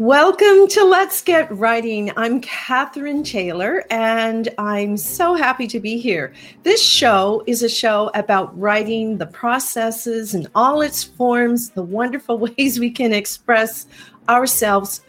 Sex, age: female, 40-59